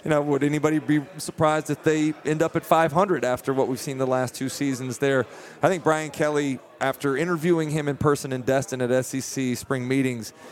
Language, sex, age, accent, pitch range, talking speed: English, male, 30-49, American, 135-160 Hz, 205 wpm